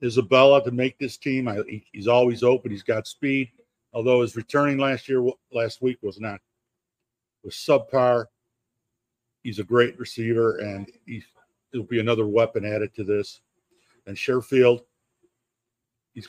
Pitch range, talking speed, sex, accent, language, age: 110-125 Hz, 140 wpm, male, American, English, 50-69